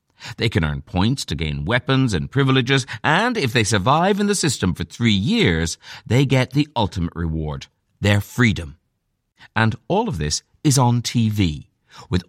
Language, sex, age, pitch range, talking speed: English, male, 60-79, 85-140 Hz, 165 wpm